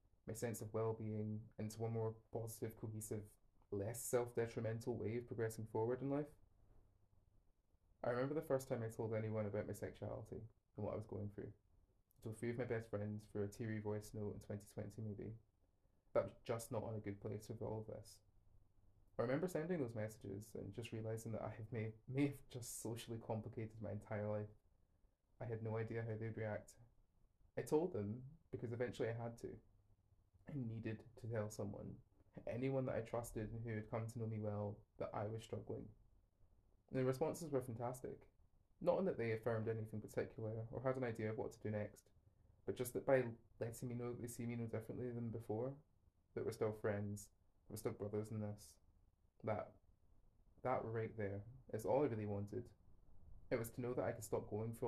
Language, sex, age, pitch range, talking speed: English, male, 20-39, 100-115 Hz, 200 wpm